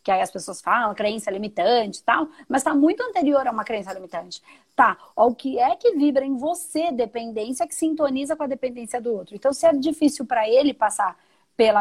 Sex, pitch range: female, 220-315 Hz